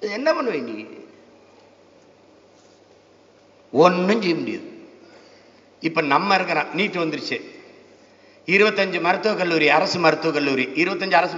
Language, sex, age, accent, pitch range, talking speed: Tamil, male, 50-69, native, 185-305 Hz, 60 wpm